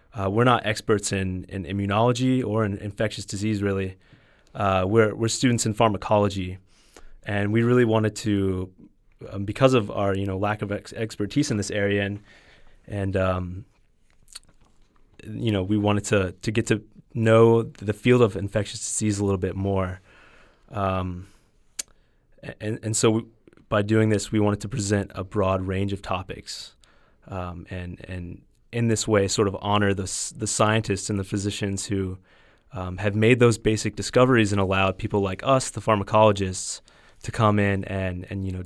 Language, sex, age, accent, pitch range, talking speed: English, male, 30-49, American, 95-110 Hz, 170 wpm